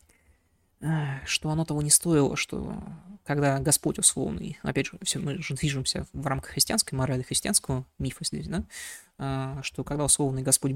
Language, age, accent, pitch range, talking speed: Russian, 20-39, native, 135-185 Hz, 145 wpm